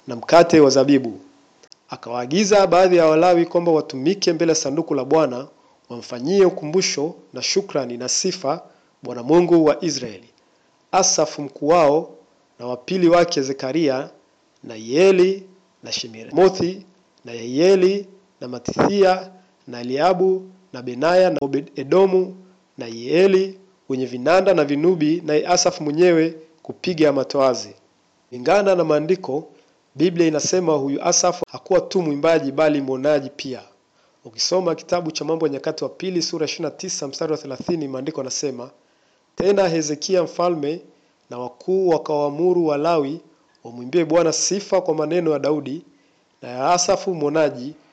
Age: 50-69